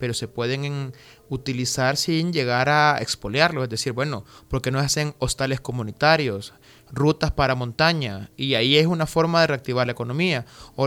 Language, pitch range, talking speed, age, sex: Spanish, 130-165 Hz, 165 wpm, 30-49, male